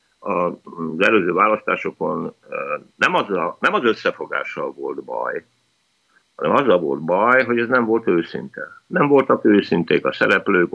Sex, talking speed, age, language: male, 145 wpm, 60-79, Hungarian